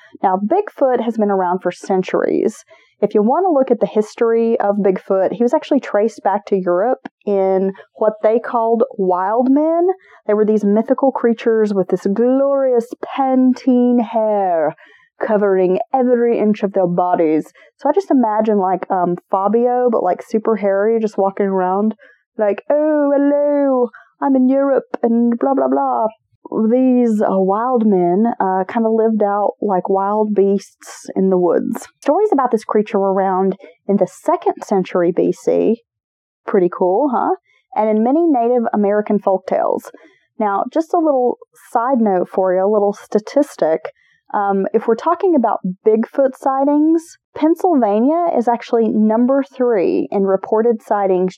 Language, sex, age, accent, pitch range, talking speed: English, female, 30-49, American, 195-265 Hz, 150 wpm